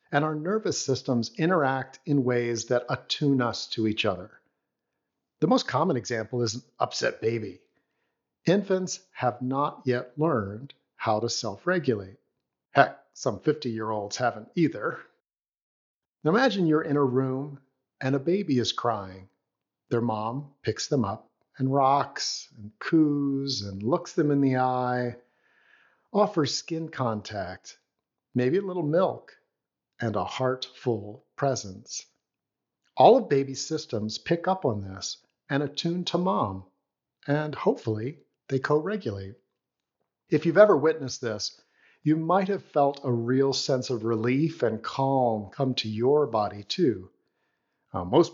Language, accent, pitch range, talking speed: English, American, 120-155 Hz, 135 wpm